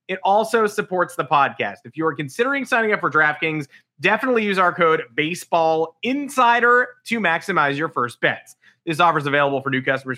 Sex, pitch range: male, 130-180 Hz